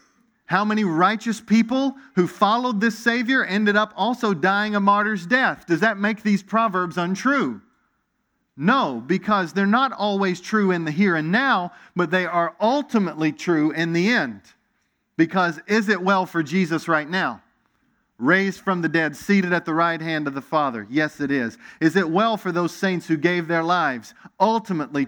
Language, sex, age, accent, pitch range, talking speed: English, male, 40-59, American, 155-205 Hz, 175 wpm